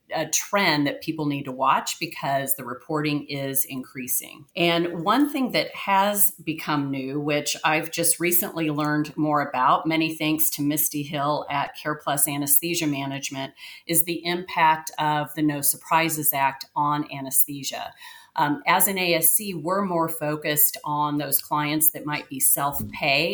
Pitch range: 145-170 Hz